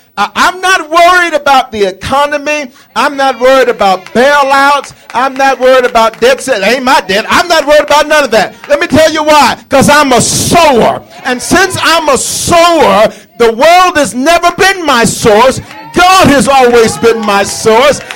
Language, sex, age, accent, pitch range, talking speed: English, male, 50-69, American, 185-300 Hz, 180 wpm